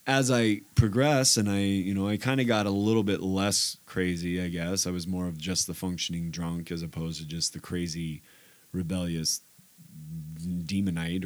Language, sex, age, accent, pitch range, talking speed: English, male, 20-39, American, 90-115 Hz, 180 wpm